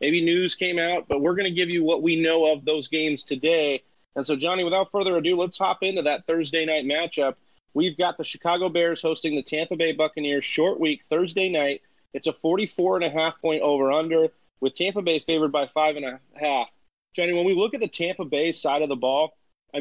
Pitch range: 145-180 Hz